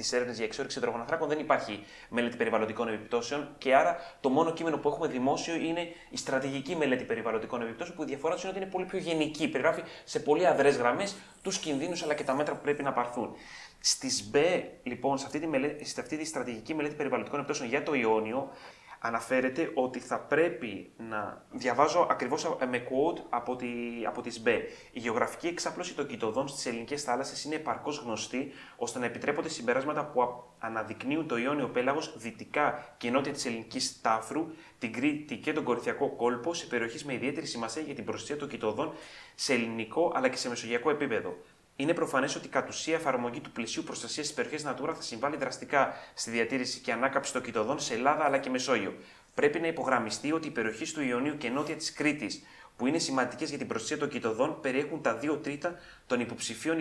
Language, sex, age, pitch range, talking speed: Greek, male, 20-39, 120-155 Hz, 190 wpm